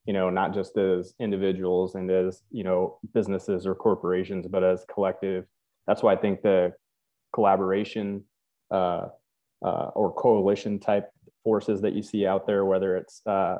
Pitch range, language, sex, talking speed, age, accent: 95-100 Hz, English, male, 160 wpm, 20-39, American